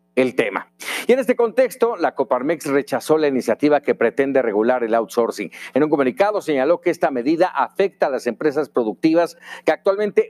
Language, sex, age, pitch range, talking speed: Spanish, male, 50-69, 135-185 Hz, 175 wpm